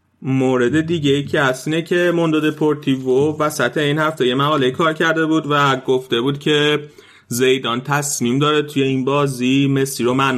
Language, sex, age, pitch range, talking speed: Persian, male, 30-49, 125-150 Hz, 160 wpm